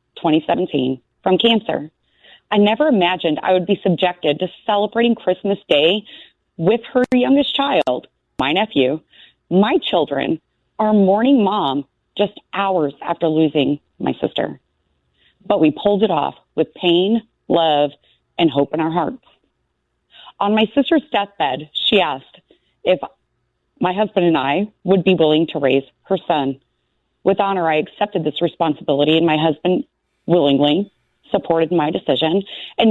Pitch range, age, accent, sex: 155-205 Hz, 30-49, American, female